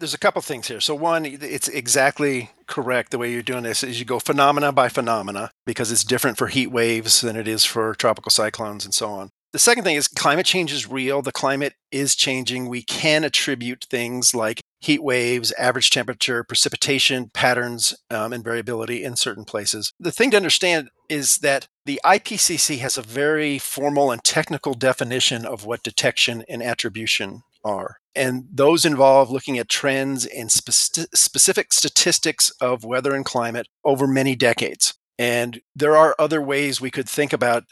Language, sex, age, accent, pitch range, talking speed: English, male, 40-59, American, 120-145 Hz, 180 wpm